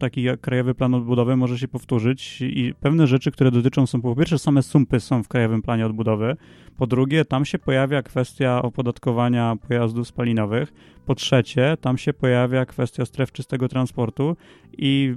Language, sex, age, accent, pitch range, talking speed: Polish, male, 30-49, native, 120-135 Hz, 165 wpm